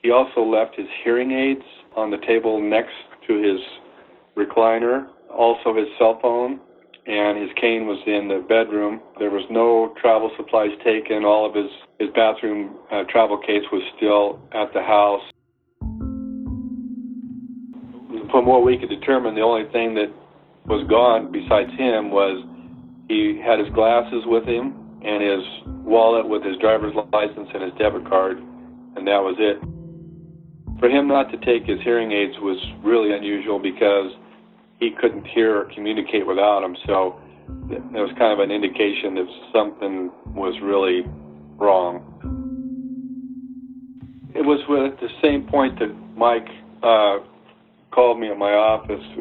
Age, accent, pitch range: 50-69, American, 100-125 Hz